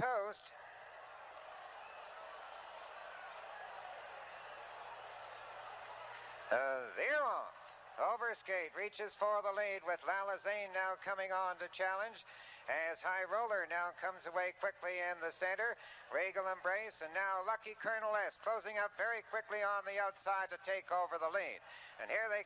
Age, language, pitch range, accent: 60-79, English, 190-210 Hz, American